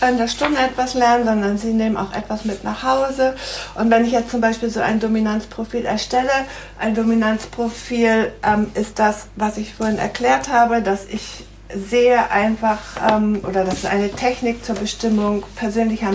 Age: 60-79